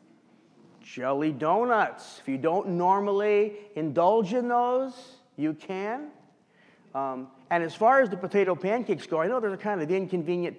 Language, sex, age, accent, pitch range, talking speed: English, male, 40-59, American, 155-210 Hz, 145 wpm